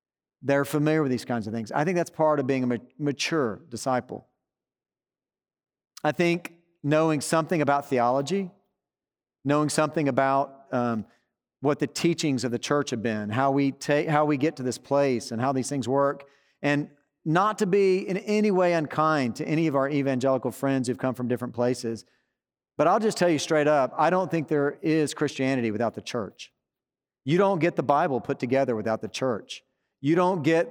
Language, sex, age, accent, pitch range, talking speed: English, male, 40-59, American, 130-160 Hz, 190 wpm